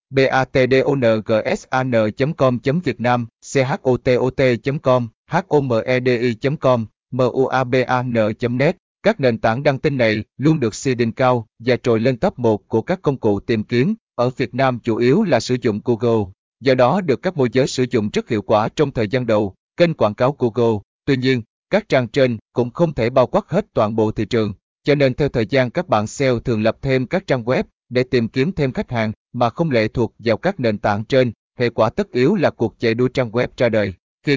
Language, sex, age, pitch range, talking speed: Vietnamese, male, 20-39, 115-135 Hz, 195 wpm